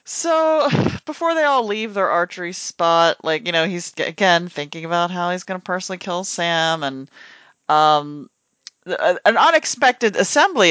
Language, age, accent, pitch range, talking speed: English, 40-59, American, 145-190 Hz, 150 wpm